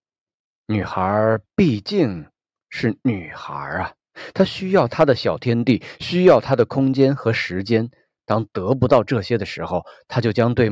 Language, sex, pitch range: Chinese, male, 100-140 Hz